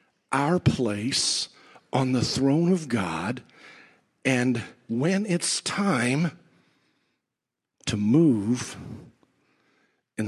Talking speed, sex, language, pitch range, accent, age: 80 wpm, male, English, 105-155 Hz, American, 50-69